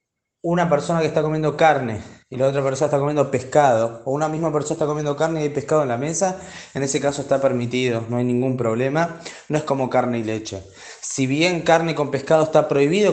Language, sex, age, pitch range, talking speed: Spanish, male, 20-39, 120-150 Hz, 220 wpm